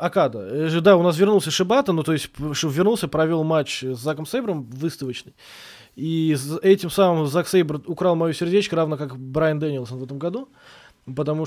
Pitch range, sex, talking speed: 135-180 Hz, male, 170 wpm